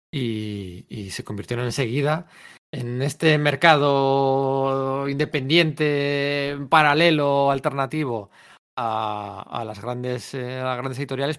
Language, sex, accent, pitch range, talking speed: Spanish, male, Spanish, 115-145 Hz, 90 wpm